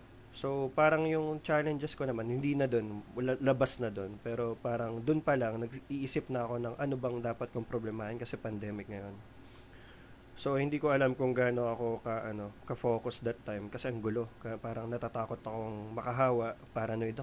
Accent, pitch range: native, 115-130 Hz